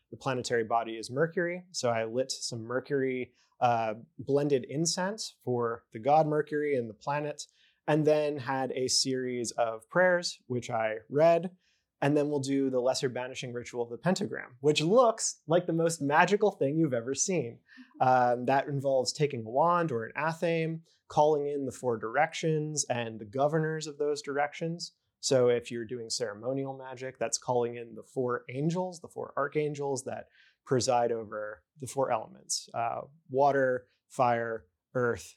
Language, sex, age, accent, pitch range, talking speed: English, male, 30-49, American, 125-155 Hz, 165 wpm